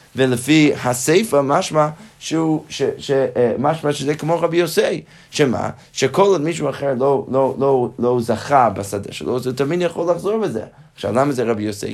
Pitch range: 125-165 Hz